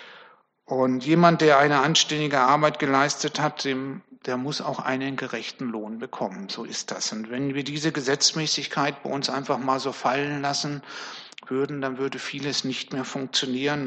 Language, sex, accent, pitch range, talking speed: German, male, German, 130-150 Hz, 160 wpm